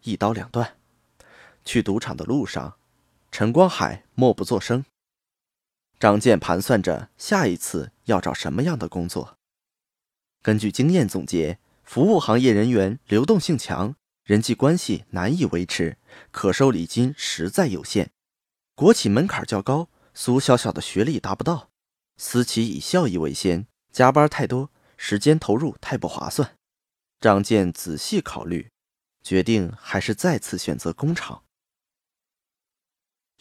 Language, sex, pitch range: Chinese, male, 100-145 Hz